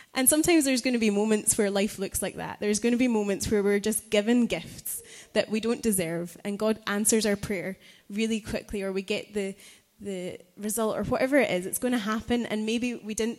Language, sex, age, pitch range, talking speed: English, female, 20-39, 195-230 Hz, 230 wpm